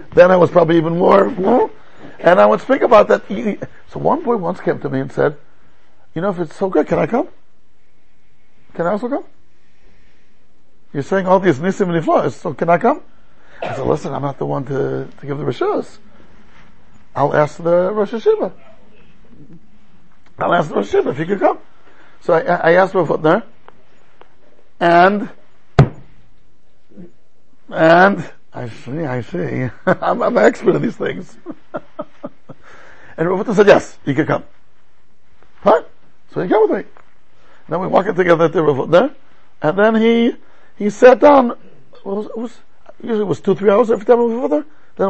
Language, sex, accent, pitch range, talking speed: English, male, American, 165-240 Hz, 180 wpm